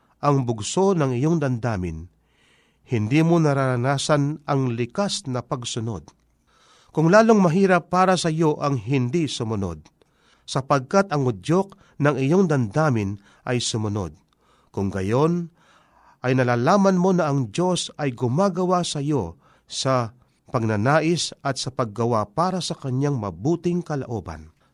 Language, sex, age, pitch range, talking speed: Filipino, male, 40-59, 120-165 Hz, 125 wpm